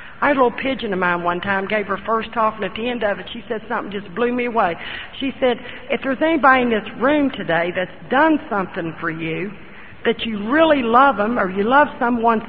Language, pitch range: English, 195-260 Hz